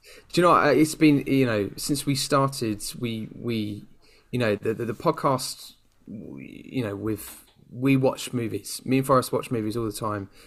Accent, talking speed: British, 185 wpm